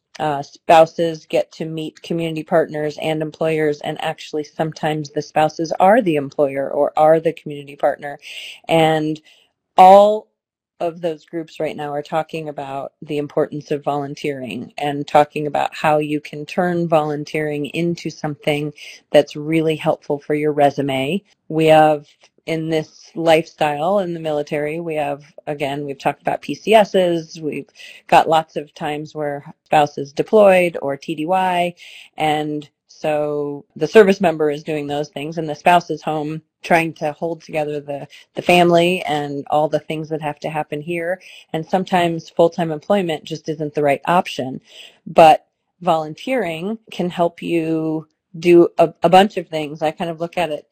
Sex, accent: female, American